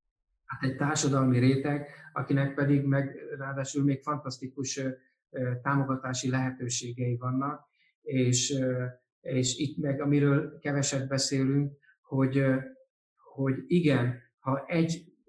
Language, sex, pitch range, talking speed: Hungarian, male, 130-150 Hz, 100 wpm